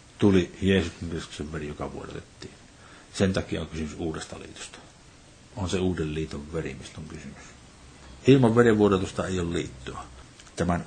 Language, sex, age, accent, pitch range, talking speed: Finnish, male, 60-79, native, 80-110 Hz, 140 wpm